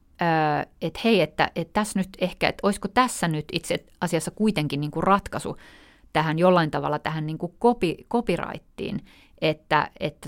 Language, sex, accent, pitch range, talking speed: Finnish, female, native, 155-195 Hz, 145 wpm